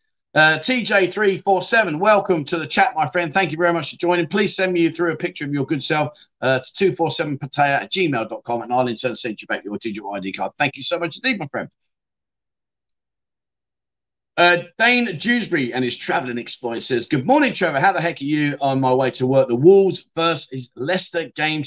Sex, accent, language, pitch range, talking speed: male, British, English, 130-185 Hz, 200 wpm